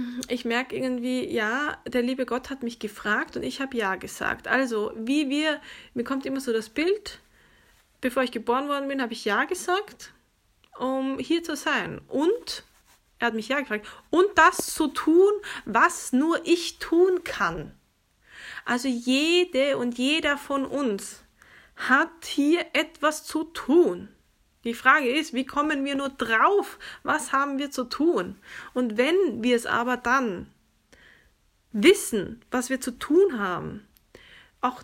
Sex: female